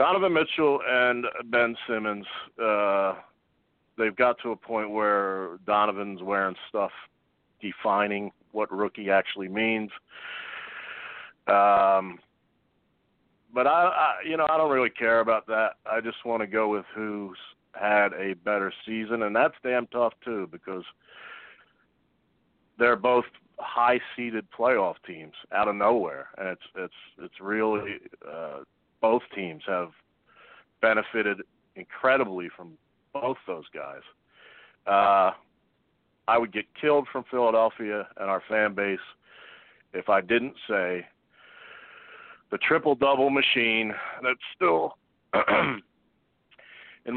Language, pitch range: English, 100-120 Hz